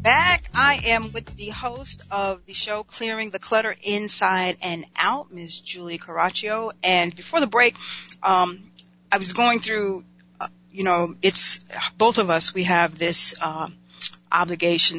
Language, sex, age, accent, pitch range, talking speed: English, female, 40-59, American, 170-205 Hz, 155 wpm